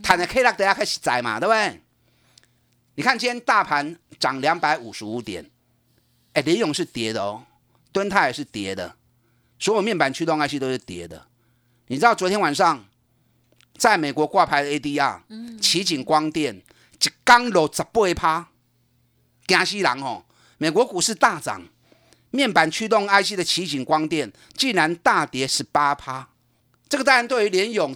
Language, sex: Chinese, male